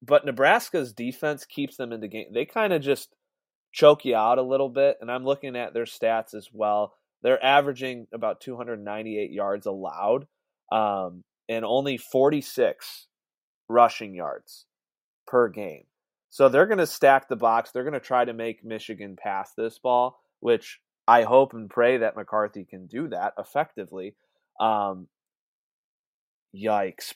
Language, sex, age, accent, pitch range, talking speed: English, male, 30-49, American, 100-130 Hz, 155 wpm